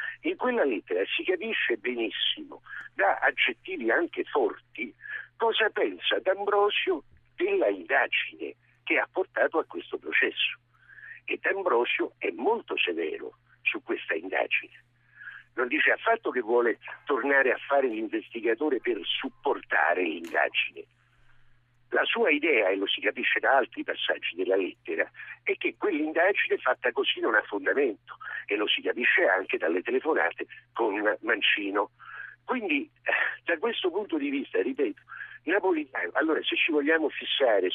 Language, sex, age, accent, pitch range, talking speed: Italian, male, 60-79, native, 325-420 Hz, 130 wpm